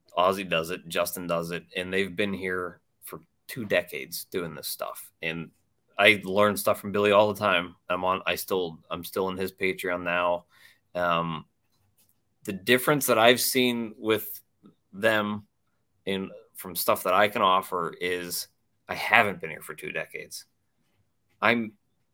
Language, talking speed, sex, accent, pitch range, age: English, 160 wpm, male, American, 95-110 Hz, 30-49